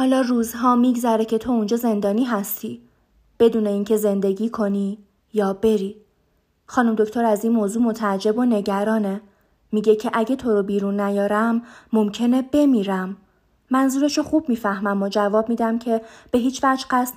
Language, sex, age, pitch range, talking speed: Persian, female, 20-39, 200-235 Hz, 145 wpm